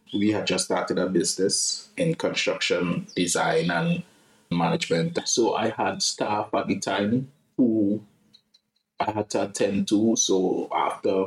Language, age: English, 20-39